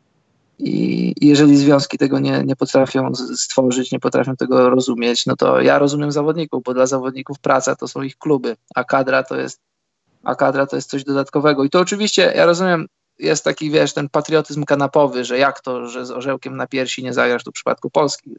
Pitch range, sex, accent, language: 130-155 Hz, male, native, Polish